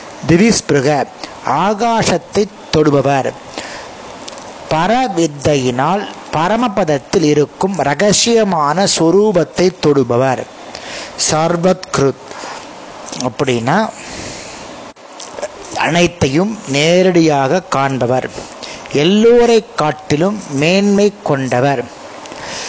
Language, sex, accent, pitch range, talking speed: Tamil, male, native, 145-195 Hz, 40 wpm